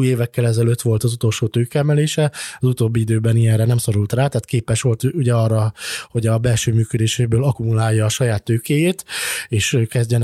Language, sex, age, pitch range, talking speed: Hungarian, male, 20-39, 115-135 Hz, 160 wpm